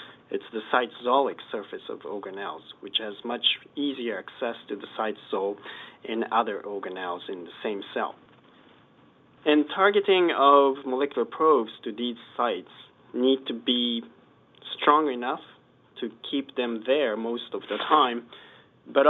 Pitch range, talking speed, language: 120-145 Hz, 135 wpm, English